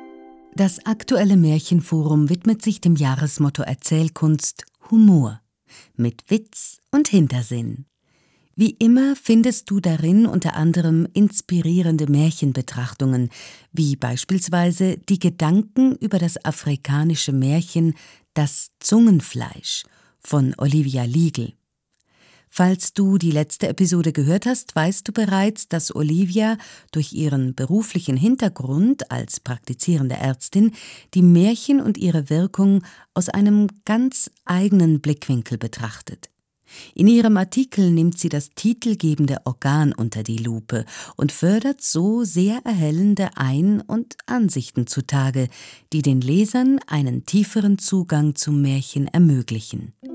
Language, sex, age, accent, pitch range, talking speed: German, female, 50-69, German, 140-200 Hz, 110 wpm